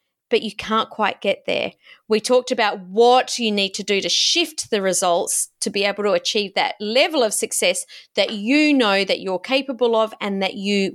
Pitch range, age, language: 210-255 Hz, 30-49, English